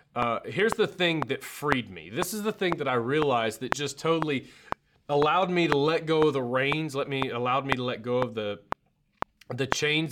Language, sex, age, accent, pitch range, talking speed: English, male, 30-49, American, 125-155 Hz, 215 wpm